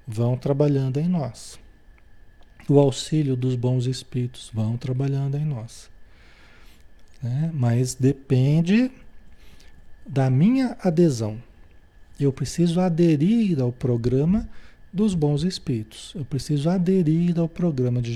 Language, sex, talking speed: Portuguese, male, 105 wpm